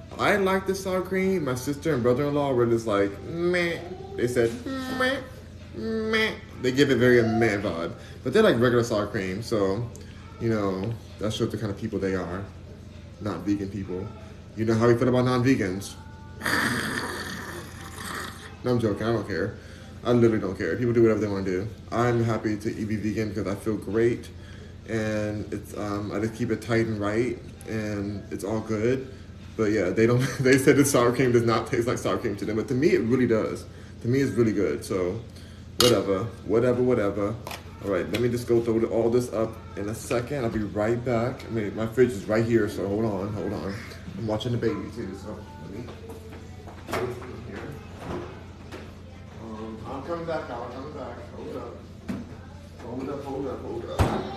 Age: 20-39